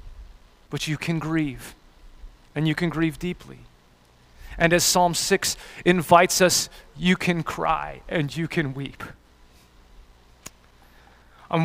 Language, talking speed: English, 120 wpm